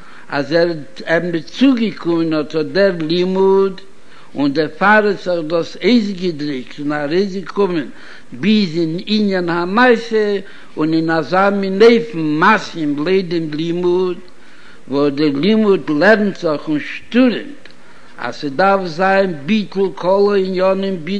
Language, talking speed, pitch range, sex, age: Hebrew, 95 wpm, 170-210 Hz, male, 60-79